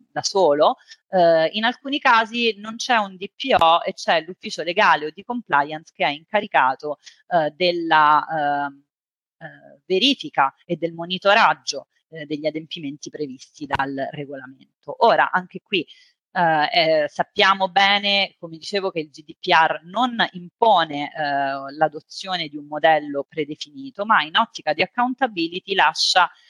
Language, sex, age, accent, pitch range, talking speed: Italian, female, 30-49, native, 150-200 Hz, 135 wpm